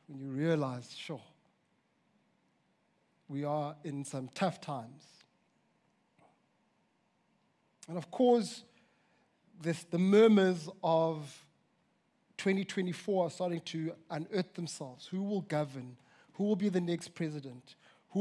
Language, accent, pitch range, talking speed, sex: English, South African, 165-230 Hz, 110 wpm, male